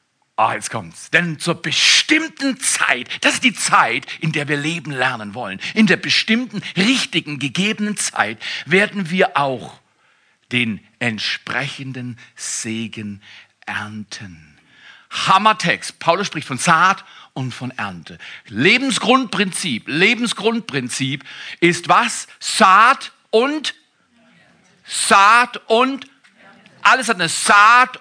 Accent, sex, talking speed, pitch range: German, male, 105 wpm, 145-230 Hz